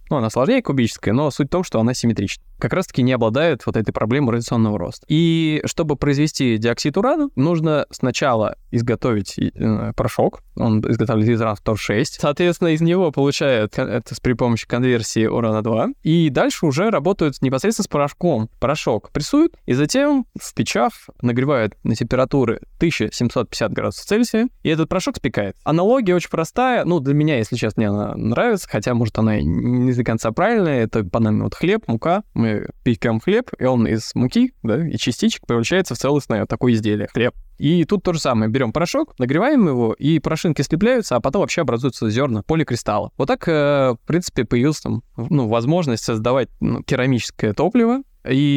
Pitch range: 115-165 Hz